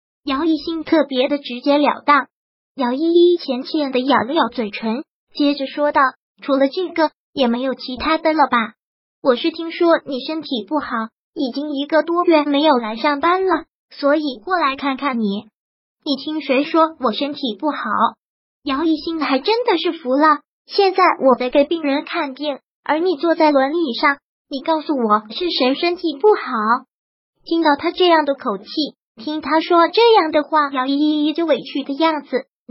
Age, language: 20-39, Chinese